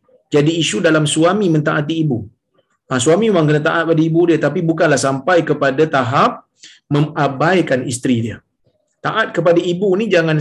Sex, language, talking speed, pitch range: male, Malayalam, 155 wpm, 130-170 Hz